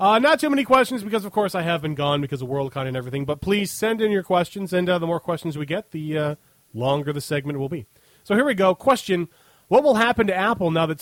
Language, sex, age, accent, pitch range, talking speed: English, male, 30-49, American, 150-205 Hz, 265 wpm